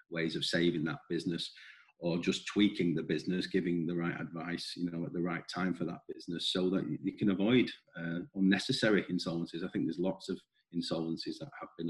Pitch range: 85-100 Hz